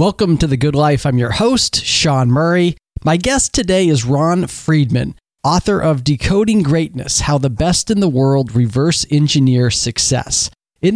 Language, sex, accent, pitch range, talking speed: English, male, American, 125-155 Hz, 165 wpm